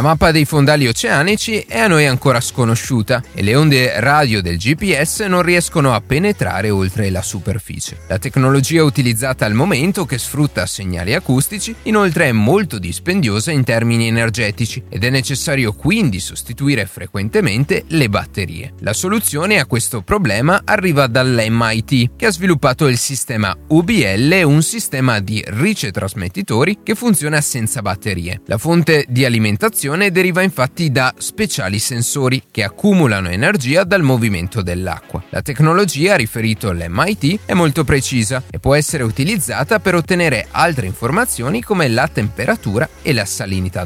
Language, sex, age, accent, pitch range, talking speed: Italian, male, 30-49, native, 105-165 Hz, 140 wpm